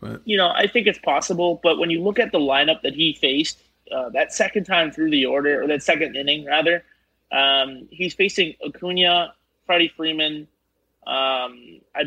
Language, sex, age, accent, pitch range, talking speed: English, male, 30-49, American, 130-160 Hz, 180 wpm